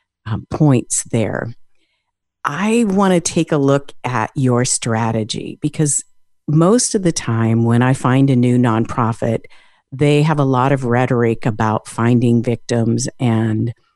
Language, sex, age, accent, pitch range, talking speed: English, female, 50-69, American, 120-160 Hz, 140 wpm